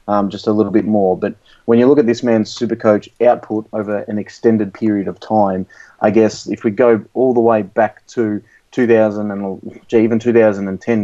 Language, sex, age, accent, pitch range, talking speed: English, male, 30-49, Australian, 100-115 Hz, 200 wpm